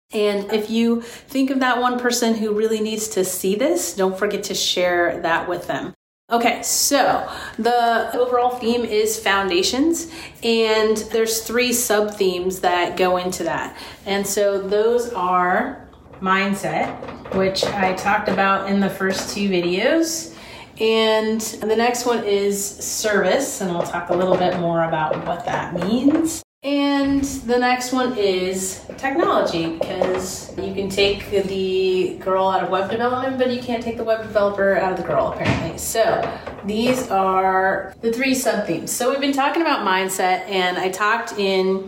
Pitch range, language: 185-230 Hz, English